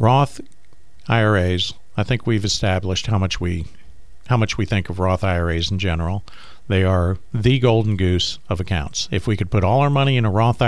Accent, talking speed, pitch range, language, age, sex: American, 195 wpm, 90-120 Hz, English, 50-69, male